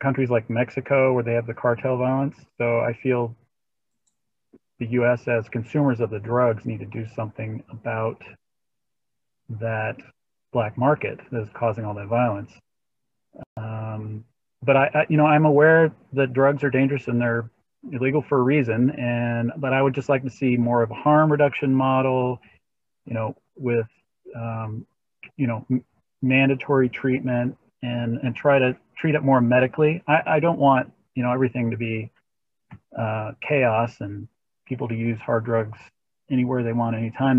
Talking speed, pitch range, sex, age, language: 165 wpm, 115-130 Hz, male, 40-59, English